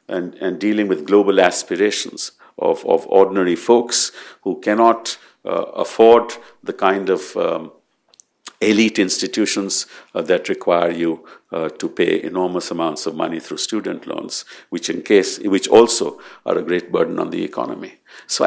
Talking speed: 155 wpm